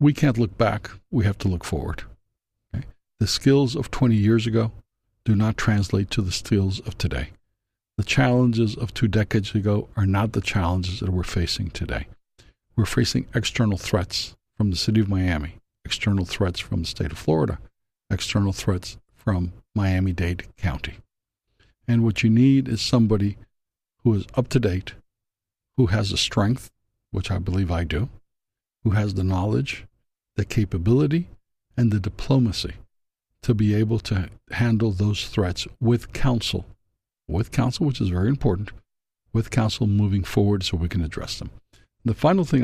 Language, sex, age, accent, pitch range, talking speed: English, male, 60-79, American, 95-115 Hz, 160 wpm